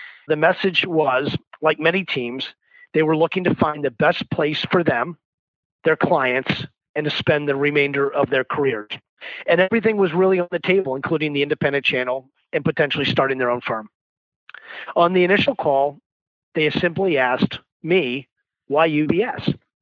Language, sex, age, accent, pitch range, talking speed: English, male, 40-59, American, 145-175 Hz, 160 wpm